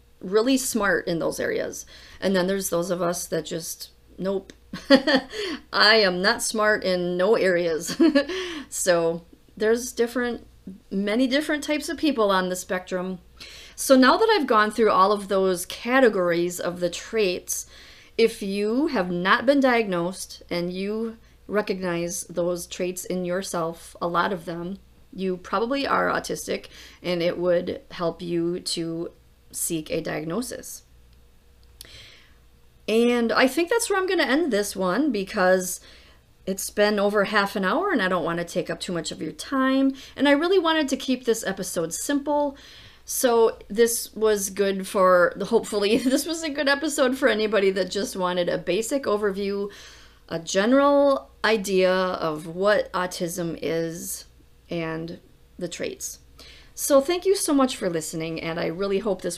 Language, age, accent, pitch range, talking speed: English, 40-59, American, 170-235 Hz, 160 wpm